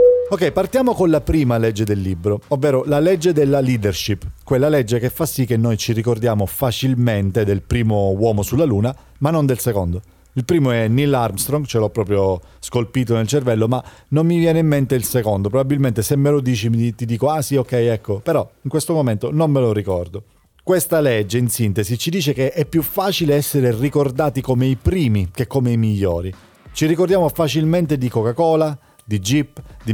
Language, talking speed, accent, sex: Italian, 195 wpm, native, male